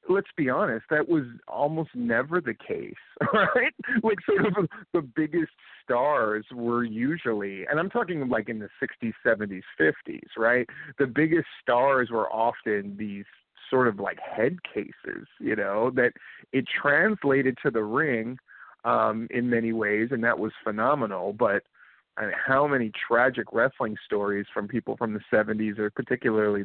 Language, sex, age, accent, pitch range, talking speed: English, male, 40-59, American, 110-150 Hz, 160 wpm